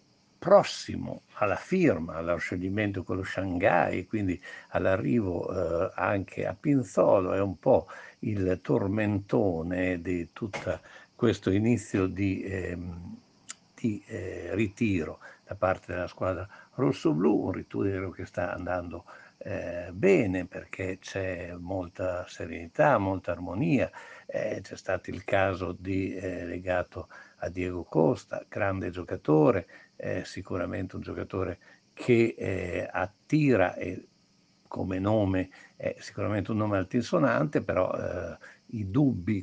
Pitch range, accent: 90-105 Hz, native